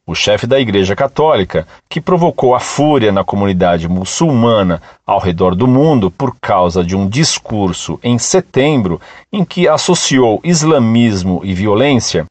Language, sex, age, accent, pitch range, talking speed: Portuguese, male, 50-69, Brazilian, 115-165 Hz, 140 wpm